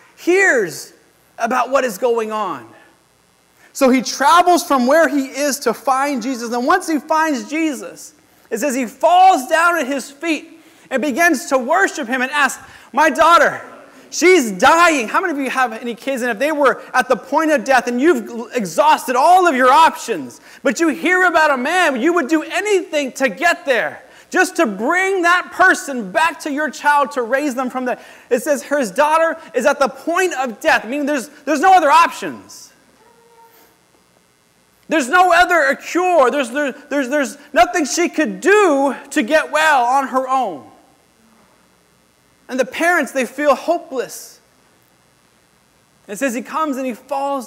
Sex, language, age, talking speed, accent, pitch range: male, English, 30-49, 175 wpm, American, 255-325 Hz